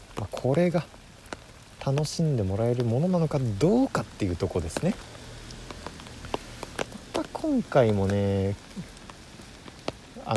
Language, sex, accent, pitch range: Japanese, male, native, 90-130 Hz